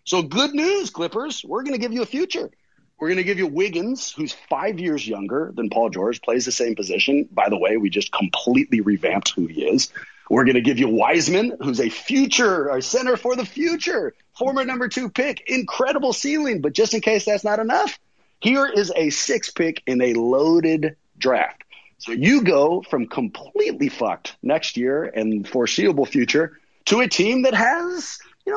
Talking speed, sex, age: 190 wpm, male, 30-49